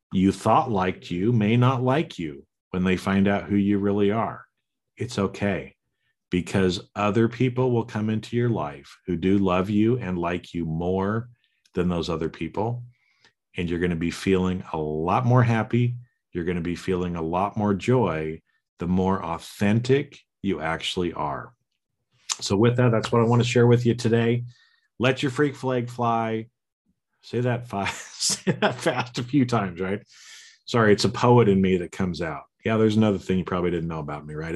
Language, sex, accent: English, male, American